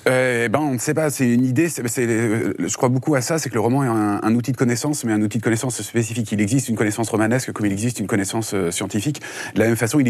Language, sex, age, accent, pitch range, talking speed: French, male, 30-49, French, 110-135 Hz, 290 wpm